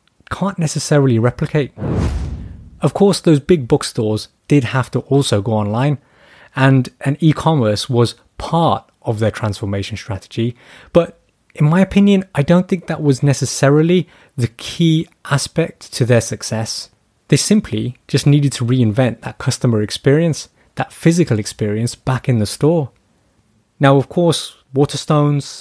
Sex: male